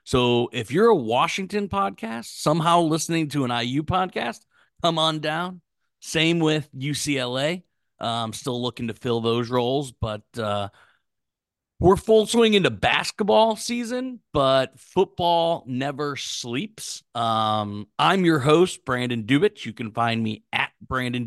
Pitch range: 115-160 Hz